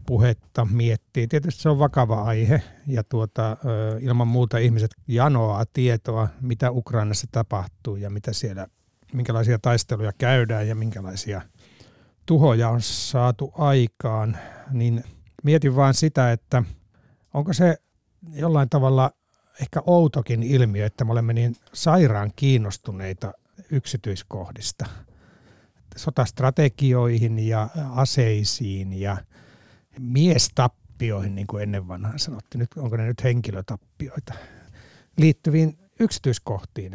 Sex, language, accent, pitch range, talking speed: male, Finnish, native, 110-140 Hz, 105 wpm